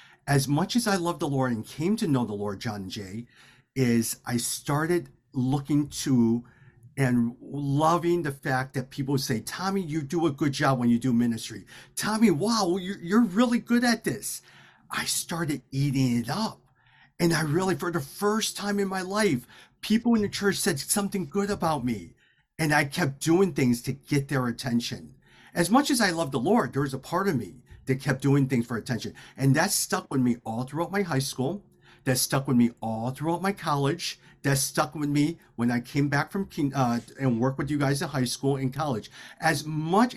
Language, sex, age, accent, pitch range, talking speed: English, male, 40-59, American, 125-175 Hz, 205 wpm